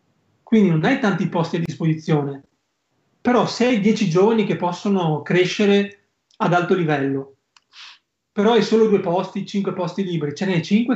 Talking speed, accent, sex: 160 wpm, native, male